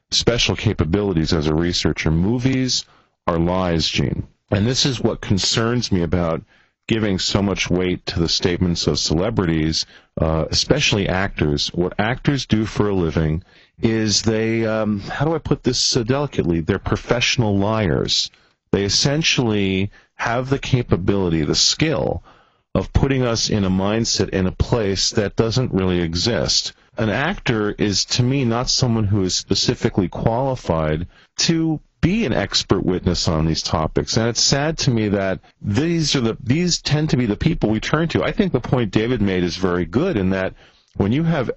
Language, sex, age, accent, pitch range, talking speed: English, male, 40-59, American, 90-120 Hz, 170 wpm